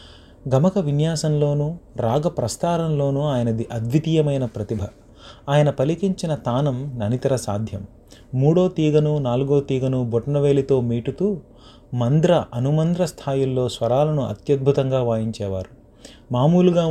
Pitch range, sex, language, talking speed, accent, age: 120-155 Hz, male, Telugu, 90 wpm, native, 30-49